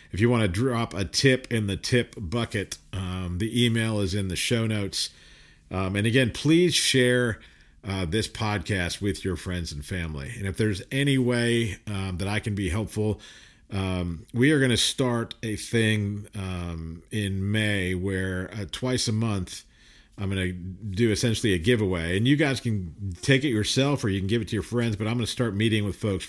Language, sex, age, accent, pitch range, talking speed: English, male, 50-69, American, 95-115 Hz, 205 wpm